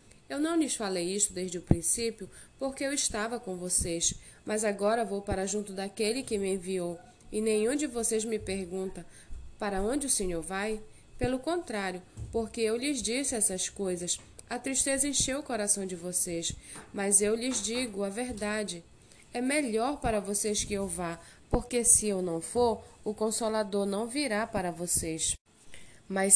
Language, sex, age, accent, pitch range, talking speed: Portuguese, female, 20-39, Brazilian, 185-235 Hz, 165 wpm